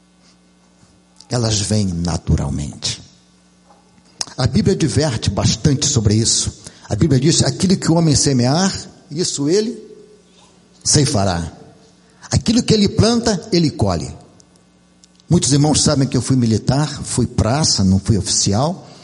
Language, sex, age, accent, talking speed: Portuguese, male, 60-79, Brazilian, 125 wpm